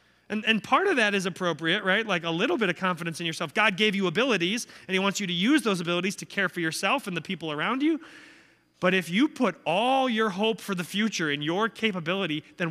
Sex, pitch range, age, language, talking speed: male, 160-230 Hz, 30-49, English, 240 wpm